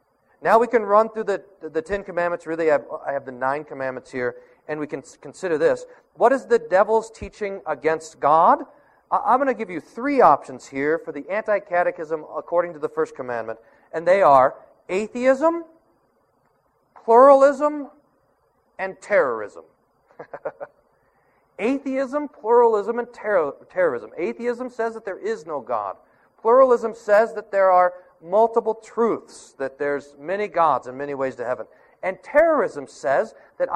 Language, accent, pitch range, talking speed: English, American, 155-245 Hz, 150 wpm